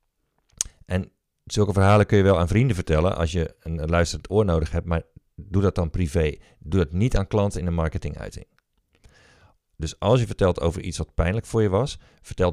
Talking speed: 195 wpm